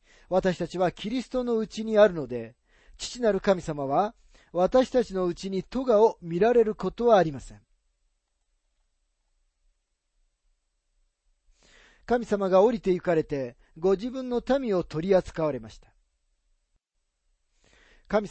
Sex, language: male, Japanese